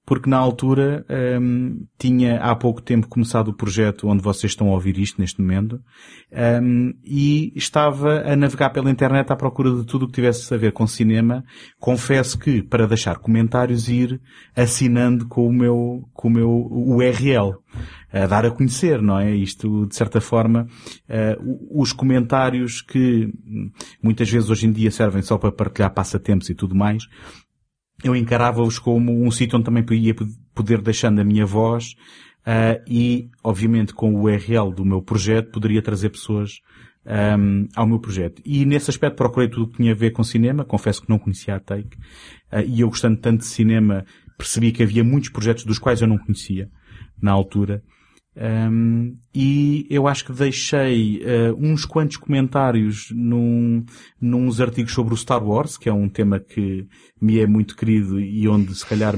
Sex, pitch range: male, 105-125 Hz